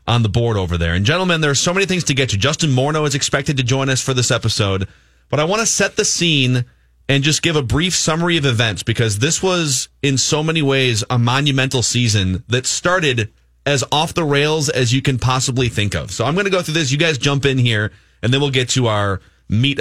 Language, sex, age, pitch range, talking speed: English, male, 30-49, 110-150 Hz, 245 wpm